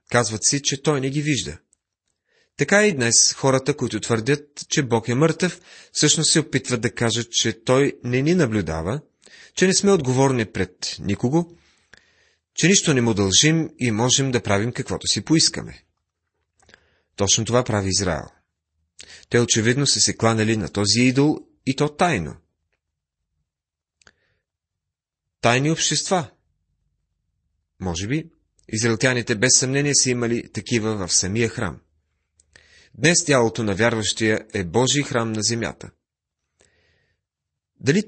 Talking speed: 130 wpm